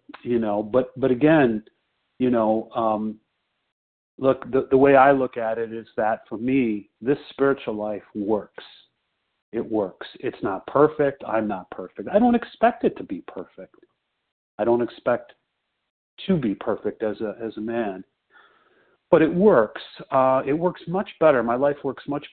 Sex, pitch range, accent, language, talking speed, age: male, 105-140 Hz, American, English, 165 wpm, 40-59